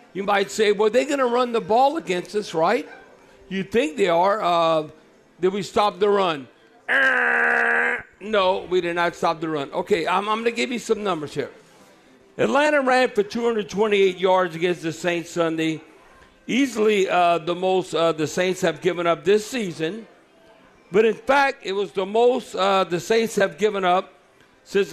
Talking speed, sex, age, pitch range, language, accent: 180 wpm, male, 50-69, 180-225 Hz, English, American